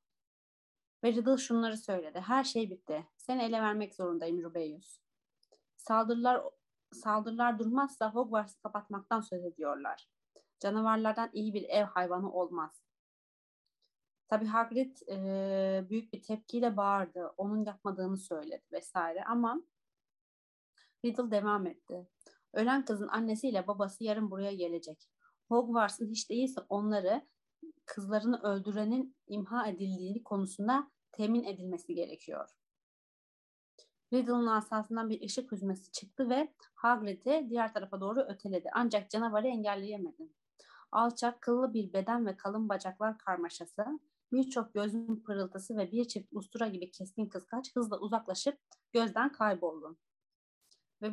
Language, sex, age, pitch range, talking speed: Turkish, female, 30-49, 195-235 Hz, 115 wpm